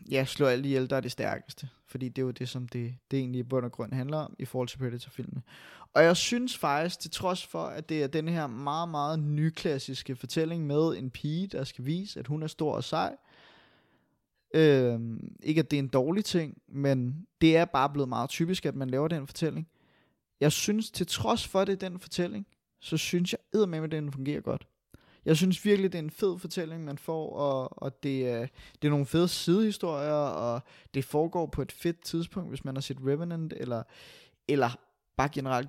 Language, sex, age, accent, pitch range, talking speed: Danish, male, 20-39, native, 135-165 Hz, 210 wpm